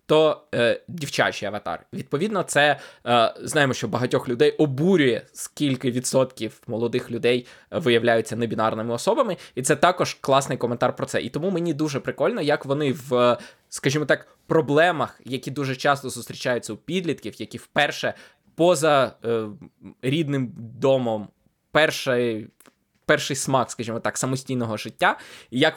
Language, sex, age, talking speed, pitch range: Ukrainian, male, 20-39, 135 wpm, 120-155 Hz